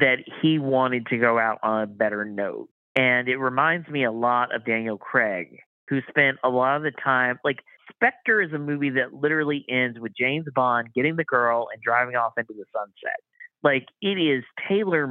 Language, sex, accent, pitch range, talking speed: English, male, American, 120-145 Hz, 200 wpm